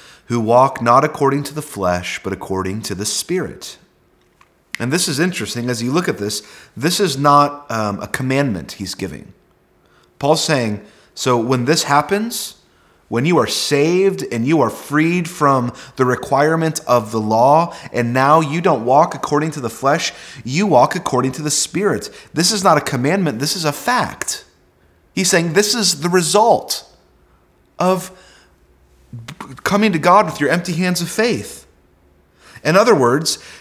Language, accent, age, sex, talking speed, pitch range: English, American, 30-49, male, 165 wpm, 110-170 Hz